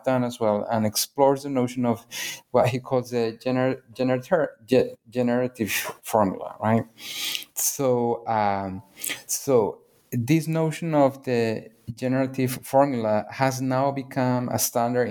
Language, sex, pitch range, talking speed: English, male, 115-140 Hz, 105 wpm